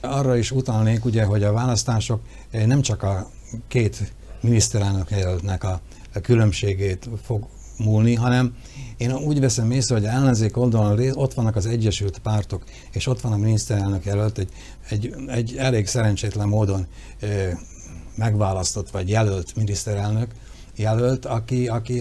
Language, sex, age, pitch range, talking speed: Hungarian, male, 60-79, 105-125 Hz, 140 wpm